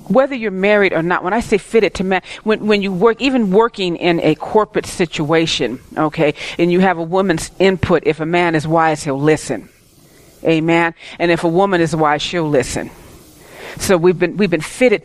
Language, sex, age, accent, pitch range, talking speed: English, female, 40-59, American, 155-210 Hz, 200 wpm